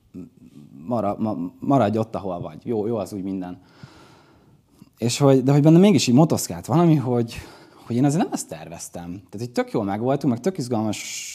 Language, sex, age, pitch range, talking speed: Hungarian, male, 20-39, 105-140 Hz, 185 wpm